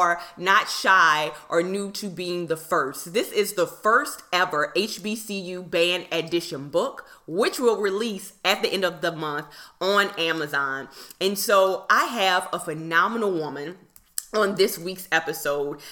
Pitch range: 165-205 Hz